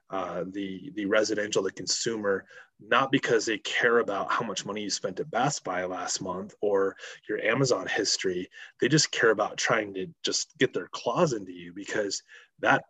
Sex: male